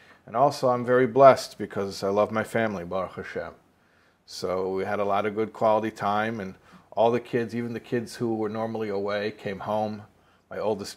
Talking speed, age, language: 195 wpm, 40-59, English